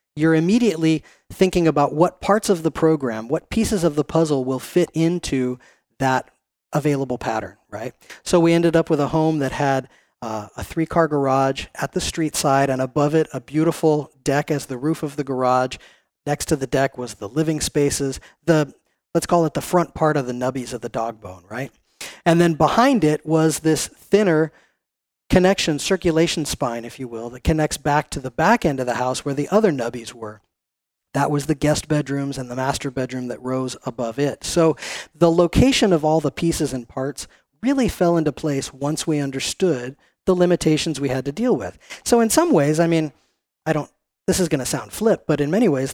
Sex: male